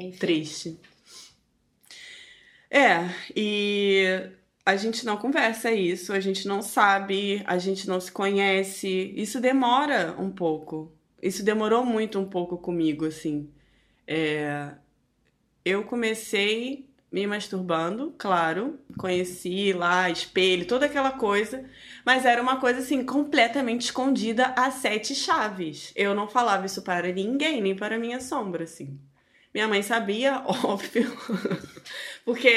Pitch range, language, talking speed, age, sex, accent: 185-235 Hz, Portuguese, 120 wpm, 20-39, female, Brazilian